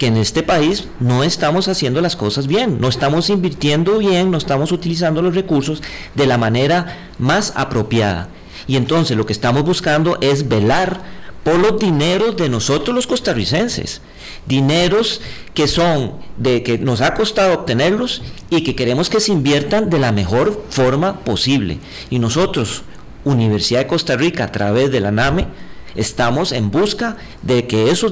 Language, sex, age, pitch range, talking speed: Spanish, male, 40-59, 120-175 Hz, 160 wpm